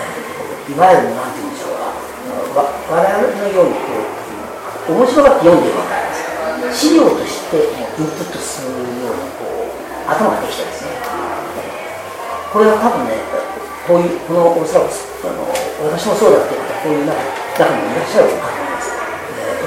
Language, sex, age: Japanese, female, 40-59